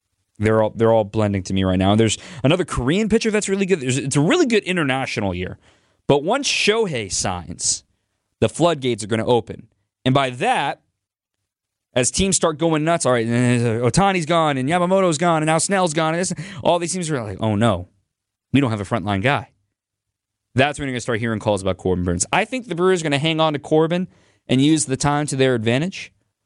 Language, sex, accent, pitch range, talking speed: English, male, American, 105-160 Hz, 220 wpm